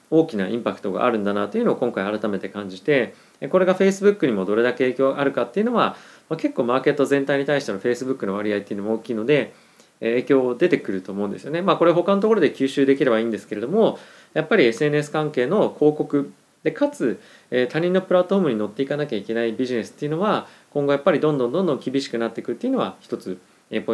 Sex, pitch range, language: male, 115-160 Hz, Japanese